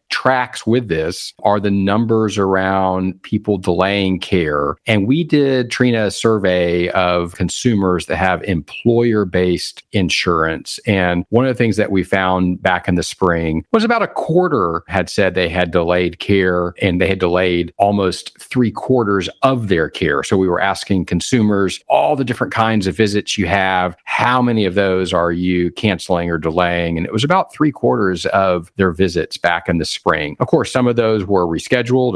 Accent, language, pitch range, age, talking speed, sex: American, English, 90-110 Hz, 40-59, 180 wpm, male